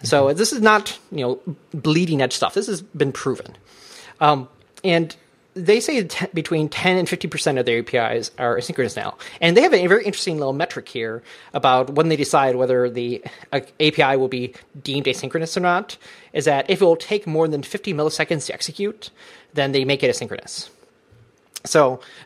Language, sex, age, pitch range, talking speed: English, male, 30-49, 130-175 Hz, 190 wpm